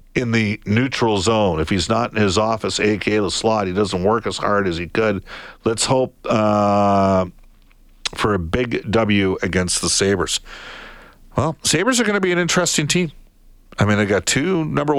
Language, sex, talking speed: English, male, 185 wpm